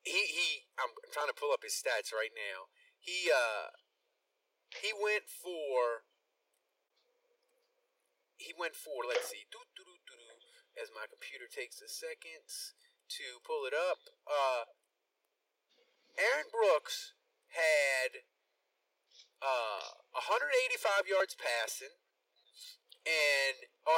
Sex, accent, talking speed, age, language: male, American, 105 wpm, 30-49, English